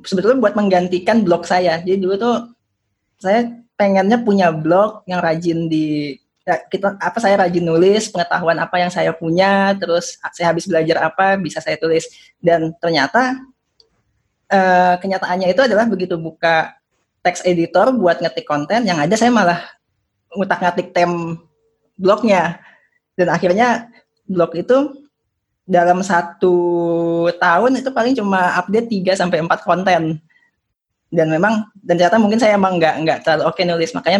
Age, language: 20-39, Indonesian